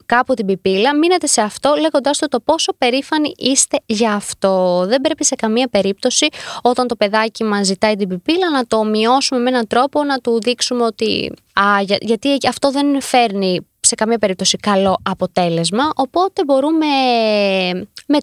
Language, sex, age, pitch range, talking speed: Greek, female, 20-39, 210-280 Hz, 160 wpm